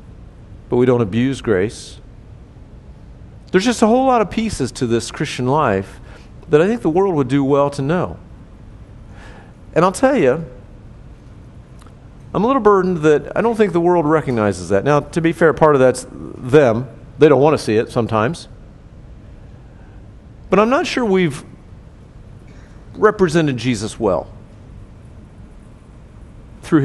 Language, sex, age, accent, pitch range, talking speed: English, male, 50-69, American, 105-155 Hz, 145 wpm